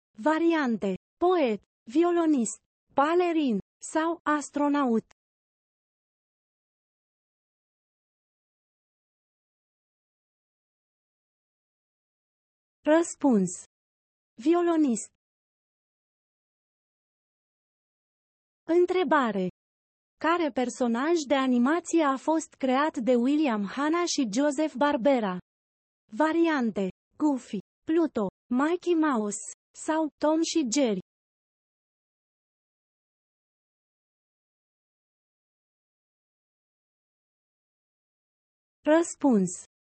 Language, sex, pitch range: Romanian, female, 235-320 Hz